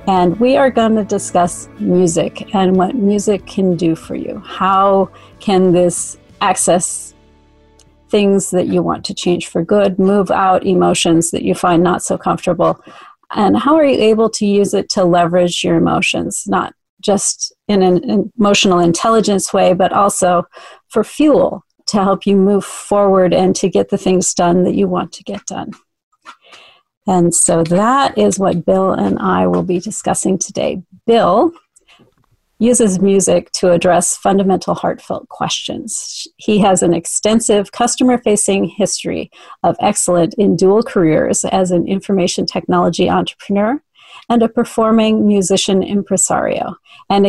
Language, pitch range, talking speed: English, 180-215 Hz, 150 wpm